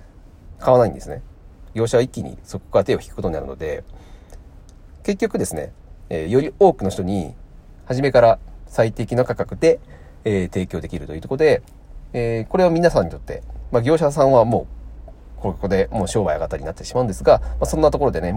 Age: 40-59